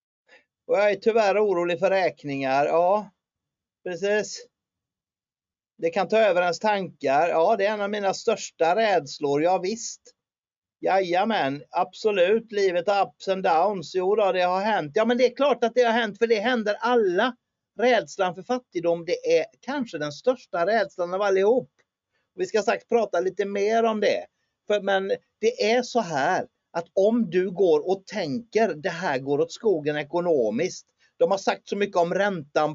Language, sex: Swedish, male